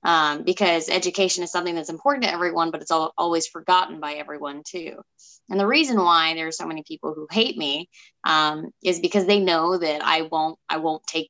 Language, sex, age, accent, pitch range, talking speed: English, female, 20-39, American, 155-185 Hz, 205 wpm